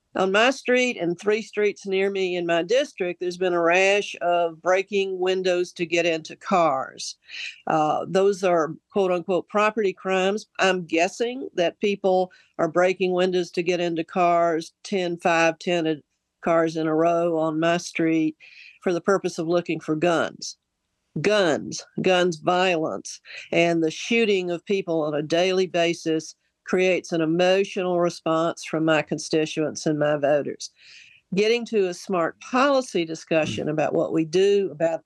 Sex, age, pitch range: female, 50-69, 165-195 Hz